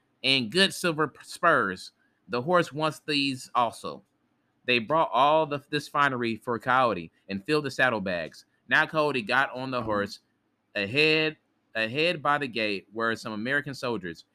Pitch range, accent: 110-150 Hz, American